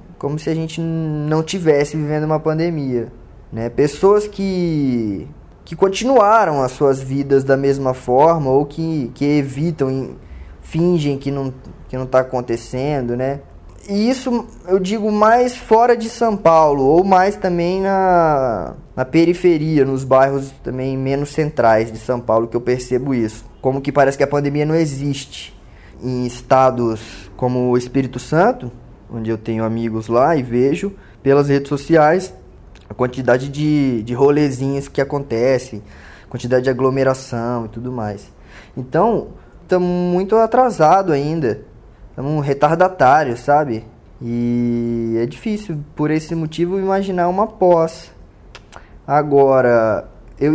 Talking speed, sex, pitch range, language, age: 140 wpm, male, 125-165 Hz, Portuguese, 20-39